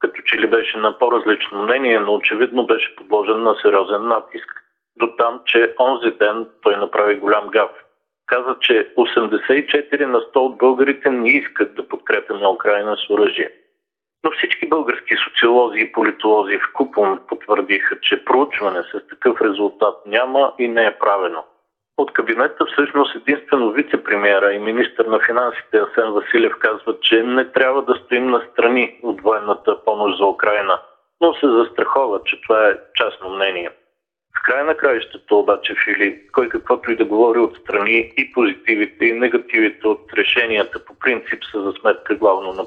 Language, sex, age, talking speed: Bulgarian, male, 50-69, 160 wpm